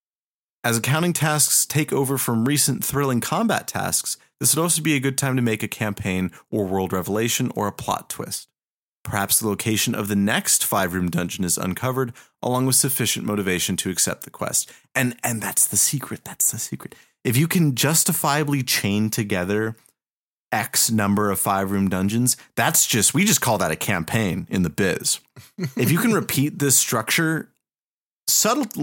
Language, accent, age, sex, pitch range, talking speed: English, American, 30-49, male, 100-140 Hz, 175 wpm